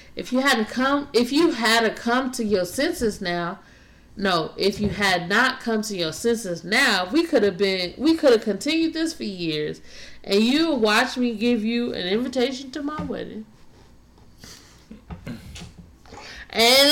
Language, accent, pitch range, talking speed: English, American, 180-255 Hz, 165 wpm